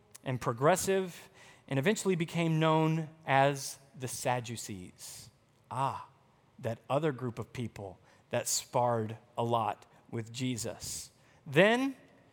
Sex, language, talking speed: male, English, 105 wpm